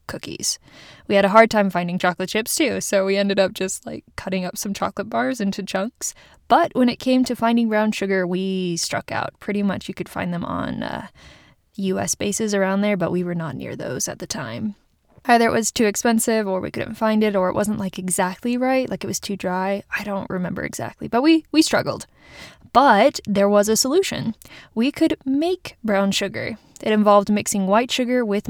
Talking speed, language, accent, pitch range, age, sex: 210 wpm, English, American, 190-240 Hz, 20-39, female